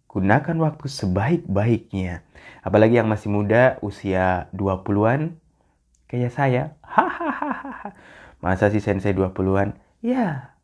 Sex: male